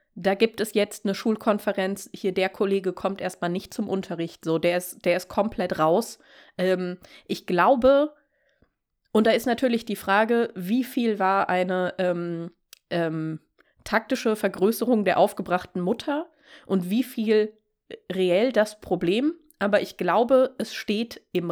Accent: German